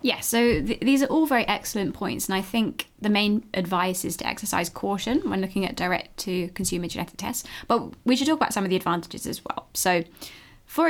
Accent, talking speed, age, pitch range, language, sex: British, 205 wpm, 20-39, 185-225 Hz, English, female